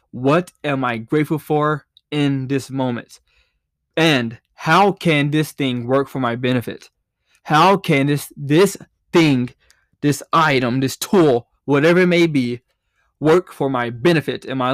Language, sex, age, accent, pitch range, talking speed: English, male, 20-39, American, 125-155 Hz, 145 wpm